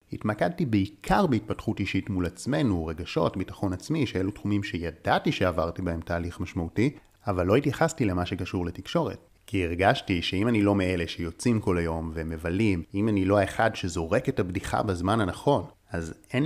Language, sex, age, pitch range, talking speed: Hebrew, male, 30-49, 90-105 Hz, 155 wpm